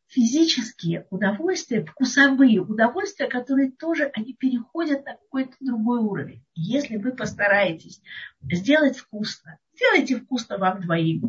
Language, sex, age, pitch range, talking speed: Russian, female, 50-69, 180-270 Hz, 110 wpm